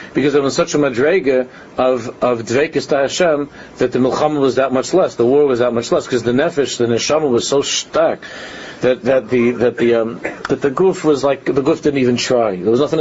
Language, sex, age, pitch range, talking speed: English, male, 50-69, 120-150 Hz, 225 wpm